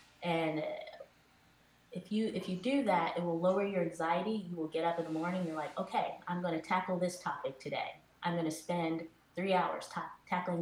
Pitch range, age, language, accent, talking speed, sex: 155-185 Hz, 20-39, English, American, 210 wpm, female